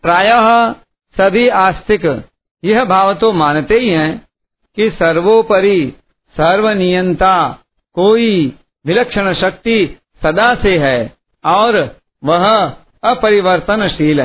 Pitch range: 160-205 Hz